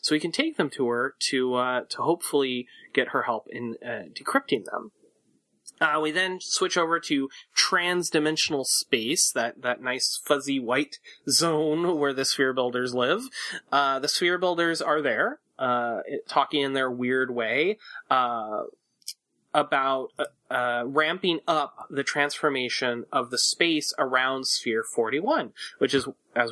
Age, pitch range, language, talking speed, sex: 30-49, 125-160 Hz, English, 150 wpm, male